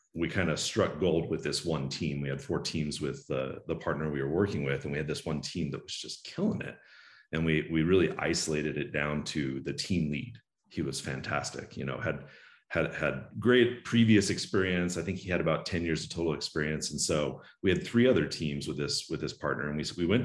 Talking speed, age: 235 wpm, 40-59